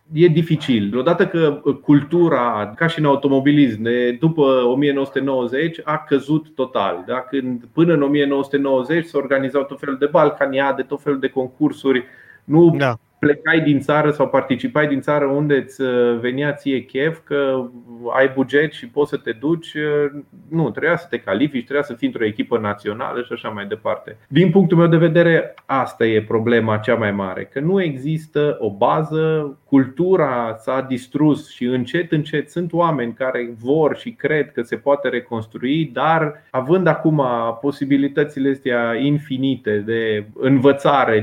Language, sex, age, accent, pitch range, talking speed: Romanian, male, 30-49, native, 125-155 Hz, 155 wpm